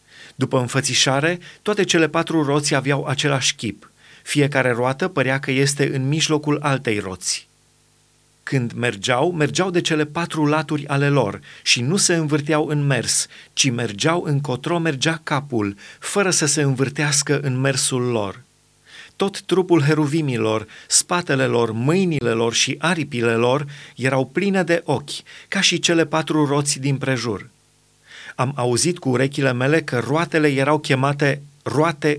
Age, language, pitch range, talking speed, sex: 30-49, Romanian, 130-155 Hz, 140 wpm, male